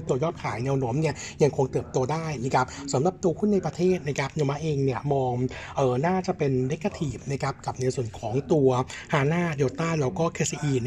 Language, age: Thai, 60-79